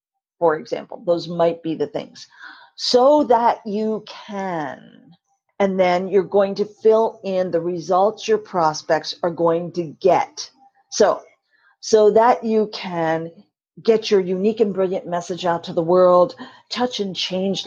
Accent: American